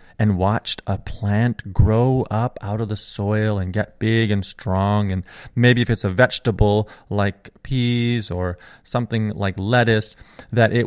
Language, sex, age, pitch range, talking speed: English, male, 30-49, 100-120 Hz, 160 wpm